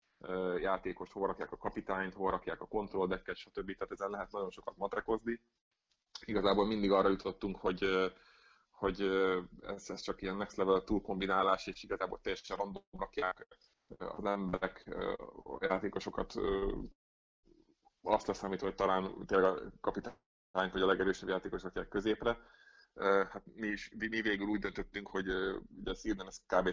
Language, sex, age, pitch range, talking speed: Hungarian, male, 30-49, 95-105 Hz, 150 wpm